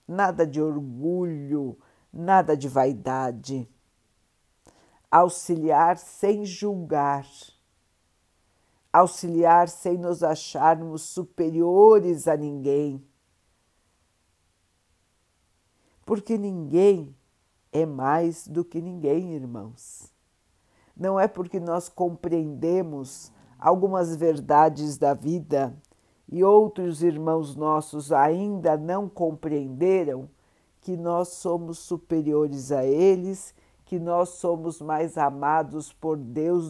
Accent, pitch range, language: Brazilian, 130-185 Hz, Portuguese